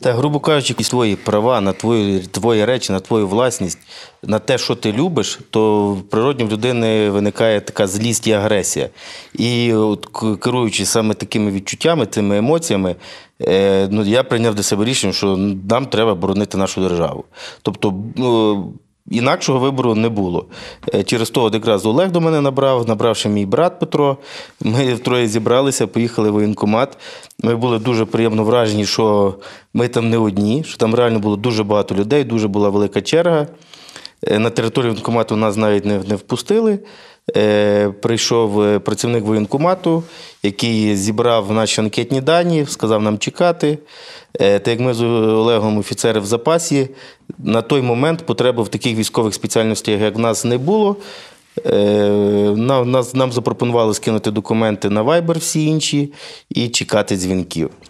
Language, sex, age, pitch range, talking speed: Ukrainian, male, 30-49, 105-130 Hz, 150 wpm